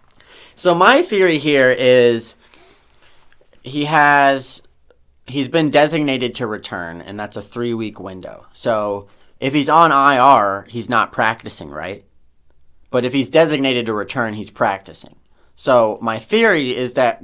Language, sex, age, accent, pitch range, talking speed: English, male, 30-49, American, 100-135 Hz, 140 wpm